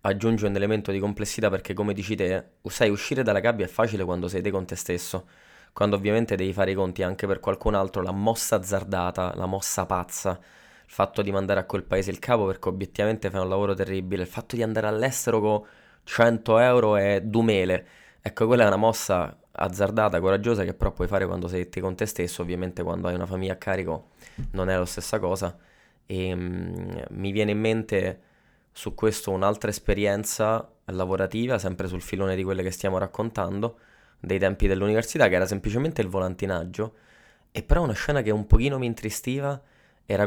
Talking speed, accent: 190 wpm, native